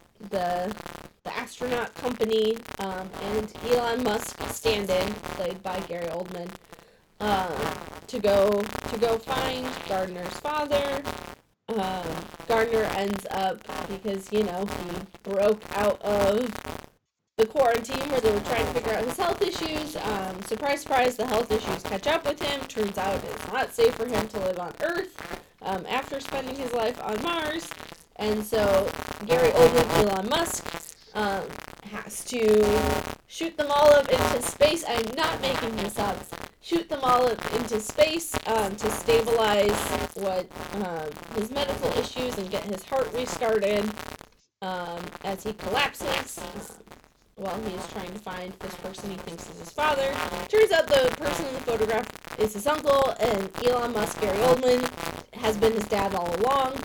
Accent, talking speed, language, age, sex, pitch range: American, 160 wpm, English, 20-39, female, 195-260 Hz